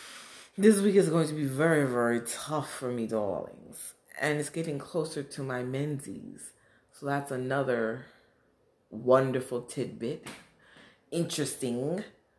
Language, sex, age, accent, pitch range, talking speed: English, female, 30-49, American, 125-165 Hz, 120 wpm